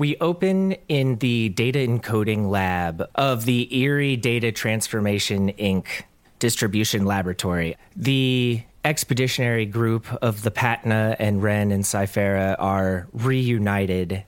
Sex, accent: male, American